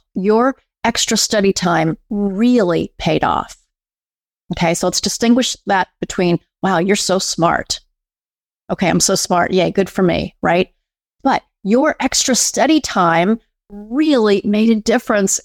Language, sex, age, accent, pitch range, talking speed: English, female, 30-49, American, 185-225 Hz, 135 wpm